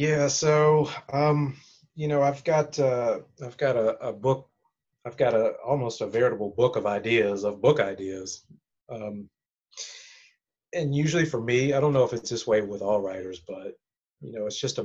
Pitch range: 105-135 Hz